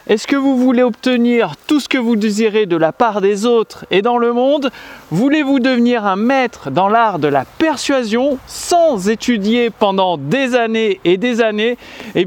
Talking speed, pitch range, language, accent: 180 wpm, 195-250 Hz, French, French